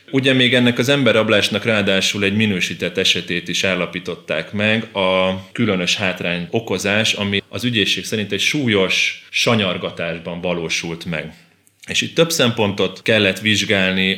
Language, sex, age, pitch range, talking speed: Hungarian, male, 30-49, 95-110 Hz, 130 wpm